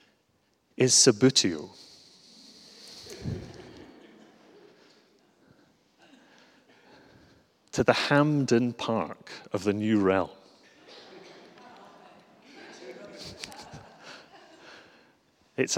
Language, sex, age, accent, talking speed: English, male, 30-49, British, 40 wpm